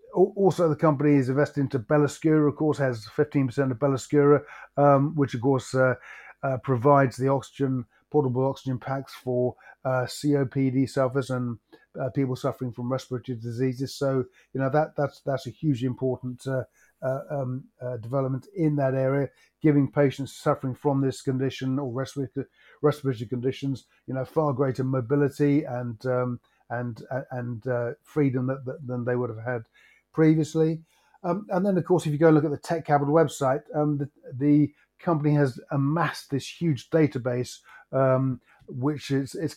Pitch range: 130-145 Hz